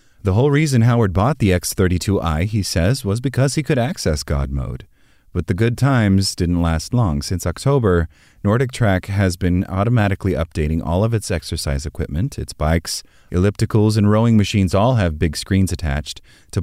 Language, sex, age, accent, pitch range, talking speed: English, male, 30-49, American, 85-110 Hz, 170 wpm